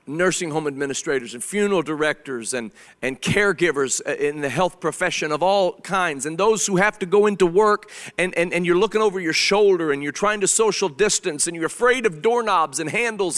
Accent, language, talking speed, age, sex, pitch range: American, English, 200 wpm, 40-59, male, 135-215 Hz